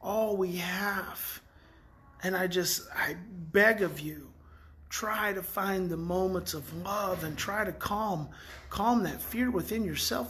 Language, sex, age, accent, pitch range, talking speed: English, male, 30-49, American, 155-205 Hz, 150 wpm